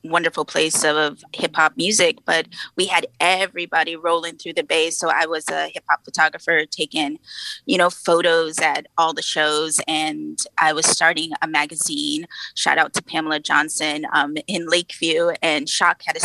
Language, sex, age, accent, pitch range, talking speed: English, female, 20-39, American, 160-205 Hz, 165 wpm